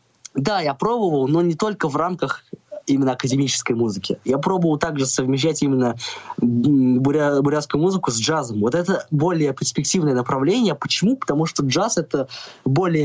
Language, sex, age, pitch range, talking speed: Russian, male, 20-39, 120-160 Hz, 145 wpm